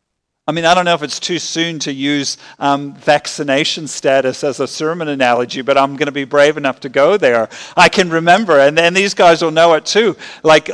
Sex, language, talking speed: male, English, 225 wpm